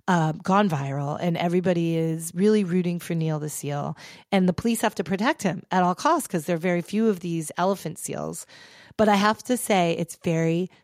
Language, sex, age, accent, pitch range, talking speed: English, female, 30-49, American, 160-200 Hz, 210 wpm